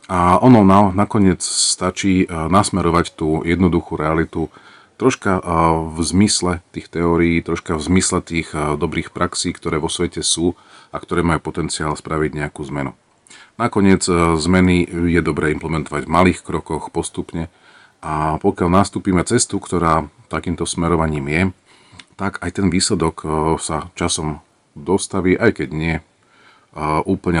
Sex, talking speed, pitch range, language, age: male, 130 wpm, 80-95 Hz, Slovak, 40-59